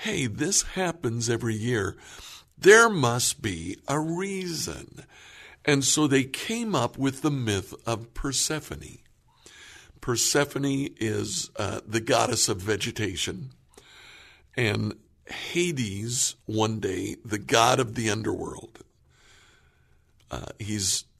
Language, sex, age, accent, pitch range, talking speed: English, male, 60-79, American, 105-140 Hz, 110 wpm